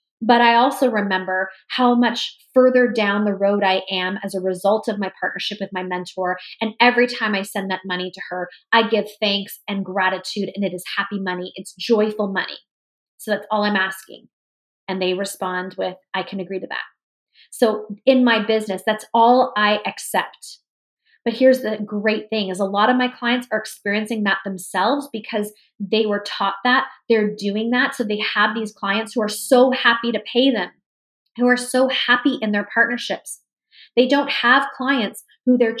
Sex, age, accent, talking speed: female, 20-39, American, 190 wpm